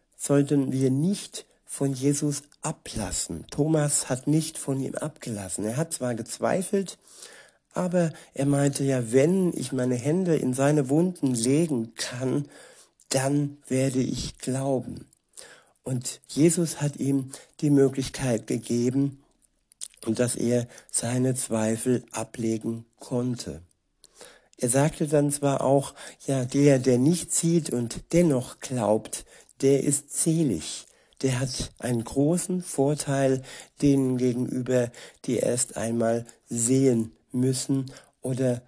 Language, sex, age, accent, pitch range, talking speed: German, male, 60-79, German, 120-145 Hz, 115 wpm